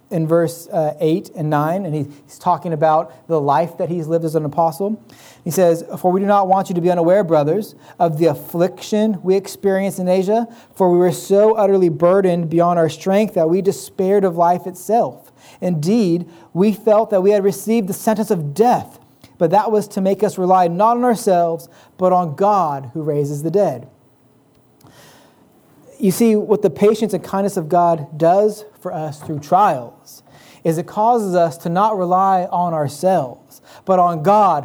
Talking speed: 185 wpm